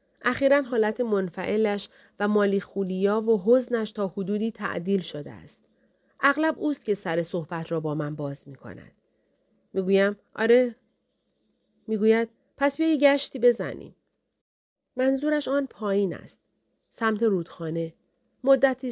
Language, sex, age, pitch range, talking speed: Persian, female, 40-59, 180-230 Hz, 130 wpm